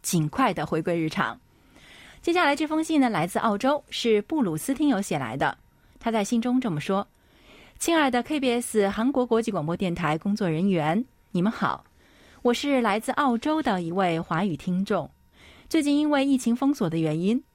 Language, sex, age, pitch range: Chinese, female, 20-39, 175-250 Hz